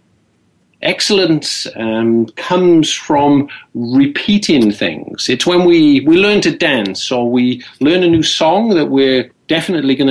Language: English